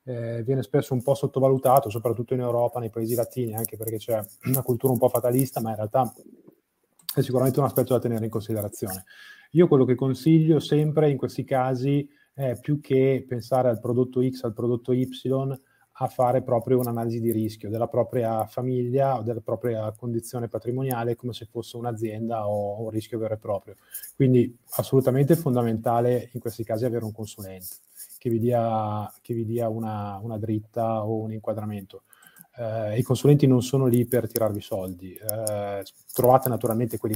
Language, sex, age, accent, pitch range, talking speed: Italian, male, 20-39, native, 115-130 Hz, 175 wpm